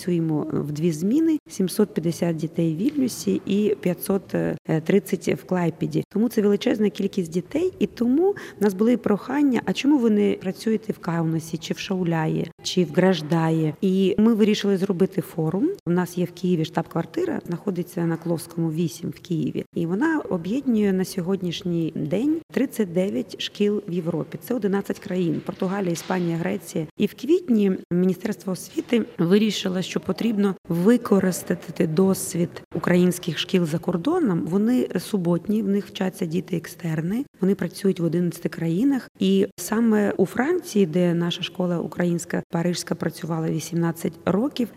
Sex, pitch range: female, 175-210 Hz